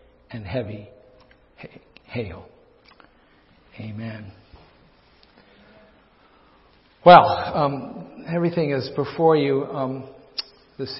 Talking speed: 65 wpm